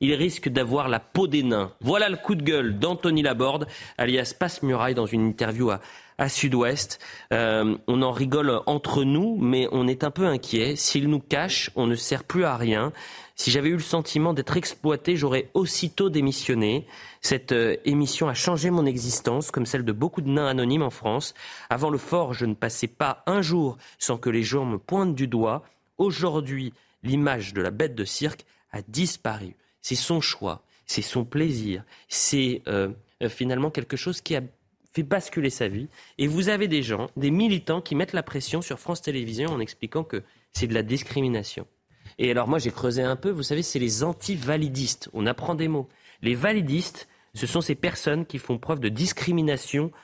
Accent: French